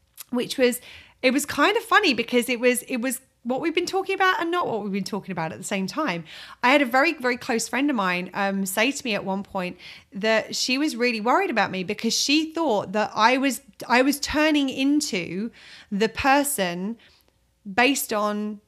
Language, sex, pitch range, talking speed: English, female, 195-265 Hz, 210 wpm